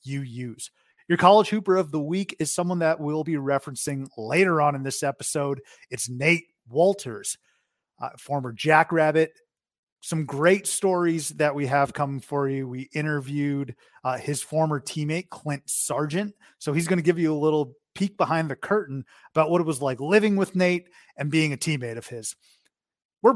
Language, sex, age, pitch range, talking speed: English, male, 30-49, 140-175 Hz, 175 wpm